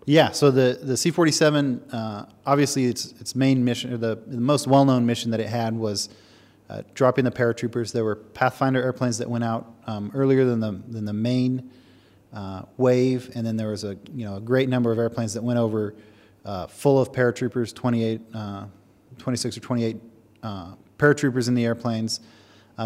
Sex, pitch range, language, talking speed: male, 105-125 Hz, English, 185 wpm